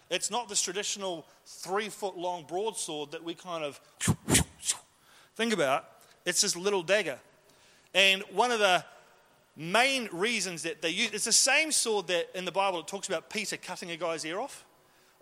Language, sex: English, male